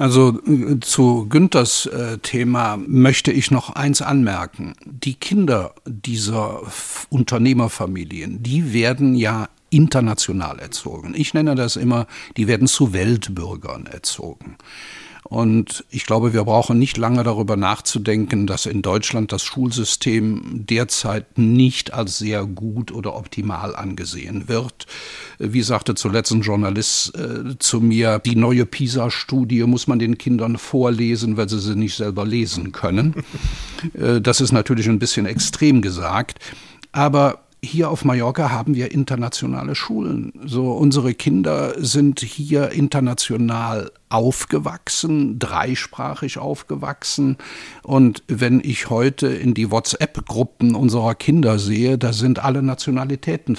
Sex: male